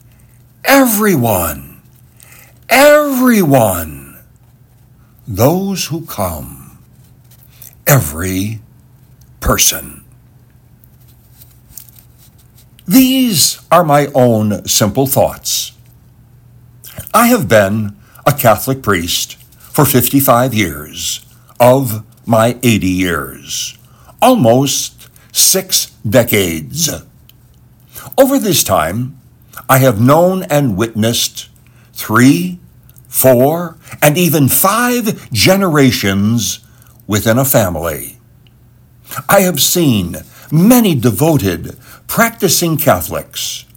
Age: 60-79